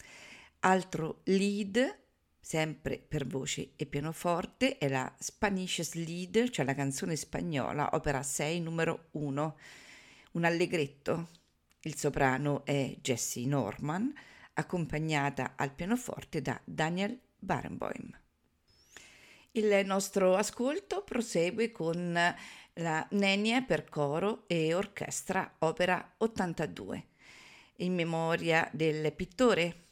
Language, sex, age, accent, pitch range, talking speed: Italian, female, 50-69, native, 150-195 Hz, 100 wpm